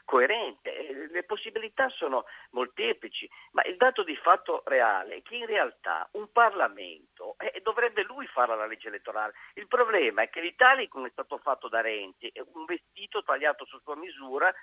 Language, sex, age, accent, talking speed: Italian, male, 50-69, native, 170 wpm